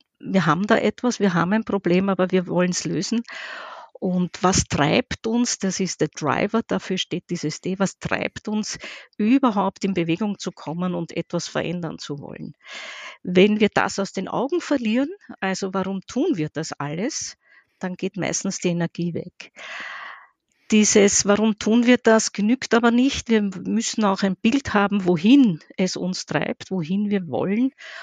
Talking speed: 165 wpm